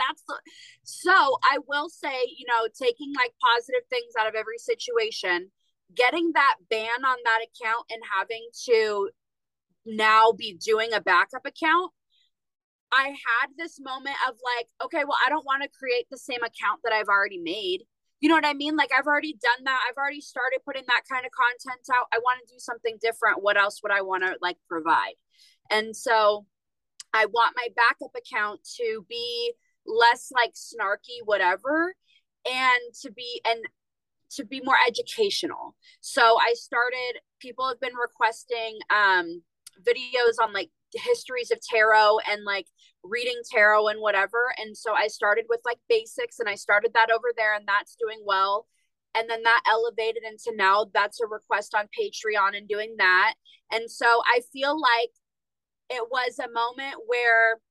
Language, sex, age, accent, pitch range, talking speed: English, female, 20-39, American, 220-295 Hz, 170 wpm